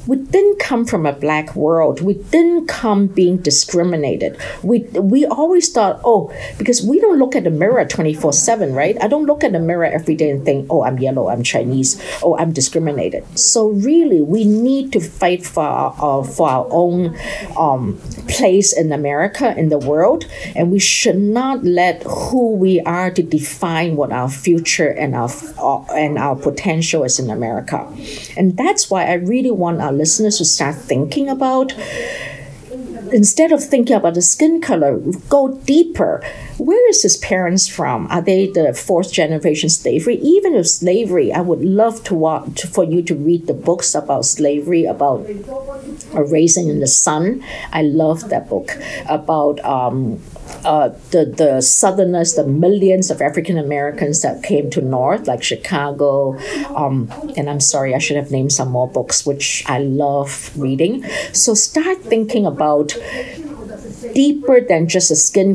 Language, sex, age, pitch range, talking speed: English, female, 50-69, 150-230 Hz, 170 wpm